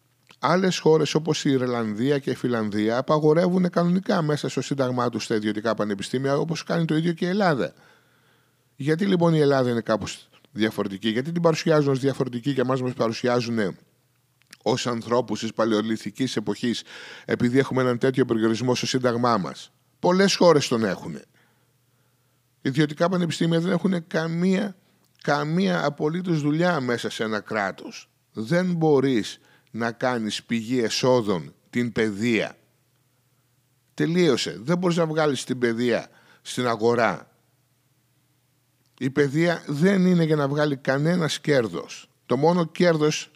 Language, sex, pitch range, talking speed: Greek, male, 120-155 Hz, 135 wpm